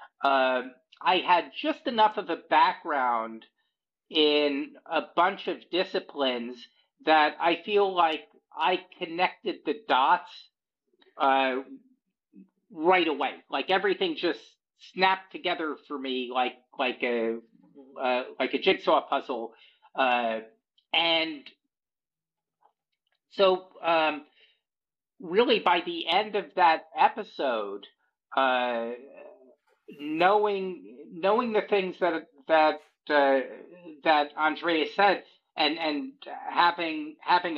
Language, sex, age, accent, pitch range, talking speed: English, male, 50-69, American, 135-185 Hz, 105 wpm